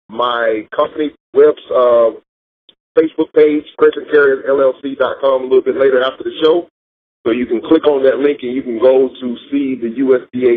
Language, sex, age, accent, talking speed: English, male, 40-59, American, 170 wpm